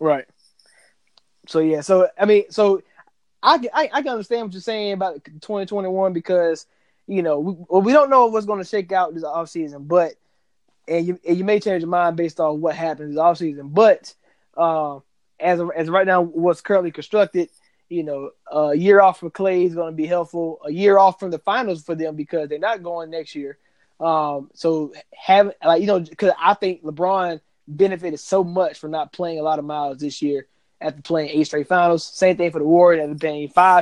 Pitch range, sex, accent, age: 155-195 Hz, male, American, 20-39